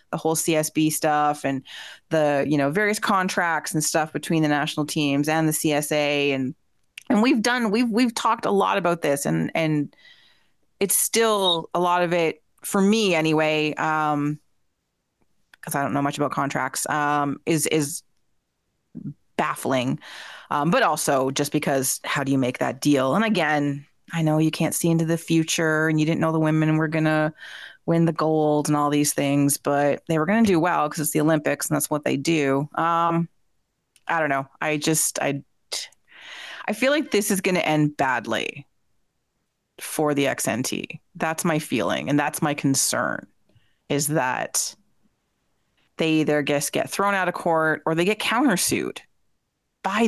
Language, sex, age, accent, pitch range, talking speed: English, female, 30-49, American, 145-170 Hz, 175 wpm